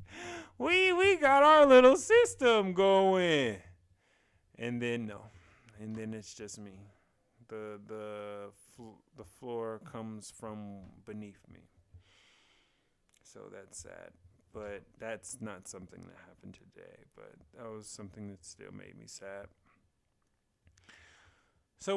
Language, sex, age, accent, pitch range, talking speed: English, male, 30-49, American, 90-130 Hz, 115 wpm